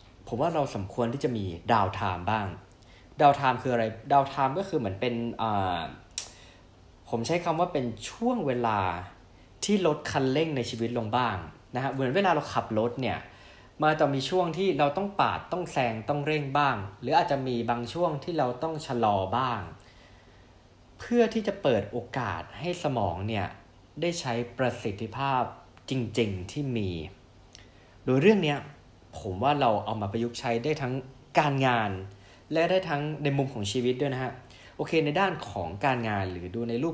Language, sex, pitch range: Thai, male, 105-145 Hz